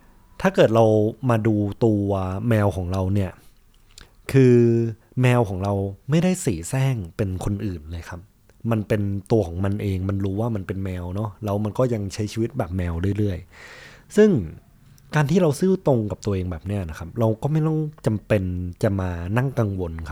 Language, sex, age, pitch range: Thai, male, 20-39, 95-125 Hz